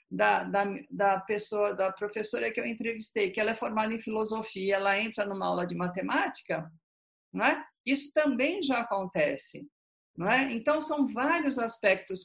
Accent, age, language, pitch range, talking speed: Brazilian, 50-69, Portuguese, 190-270 Hz, 160 wpm